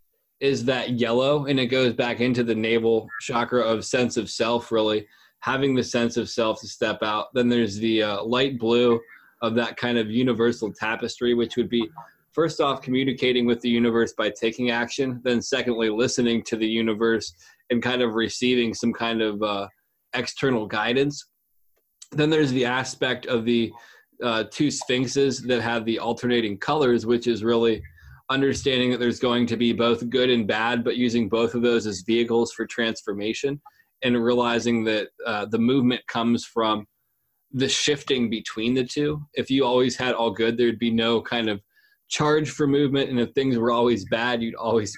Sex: male